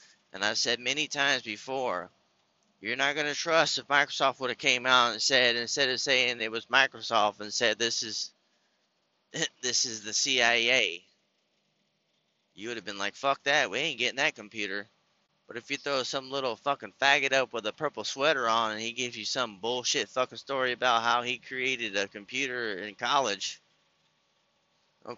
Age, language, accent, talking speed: 30-49, English, American, 185 wpm